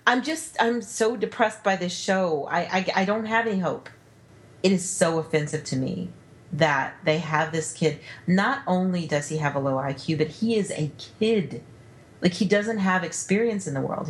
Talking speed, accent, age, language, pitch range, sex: 200 wpm, American, 40-59, English, 150-205 Hz, female